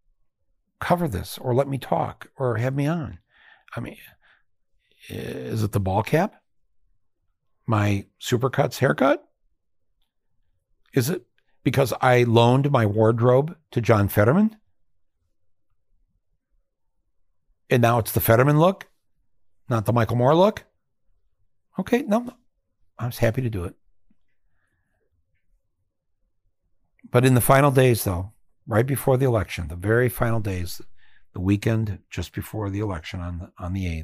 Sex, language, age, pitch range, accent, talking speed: male, English, 60-79, 90-120 Hz, American, 130 wpm